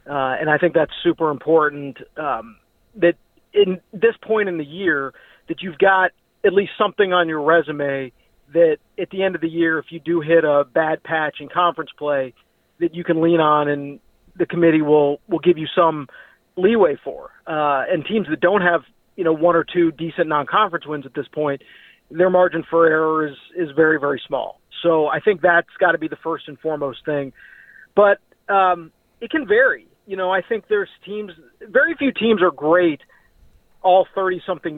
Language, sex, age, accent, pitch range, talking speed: English, male, 40-59, American, 155-180 Hz, 195 wpm